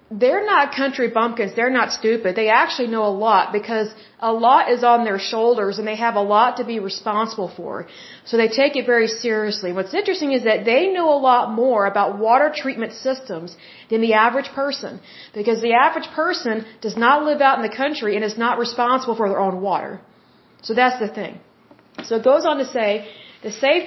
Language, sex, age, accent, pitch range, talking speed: Hindi, female, 40-59, American, 210-260 Hz, 205 wpm